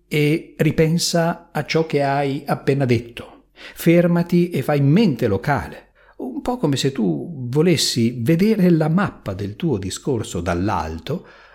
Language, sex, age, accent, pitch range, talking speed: Italian, male, 50-69, native, 110-155 Hz, 135 wpm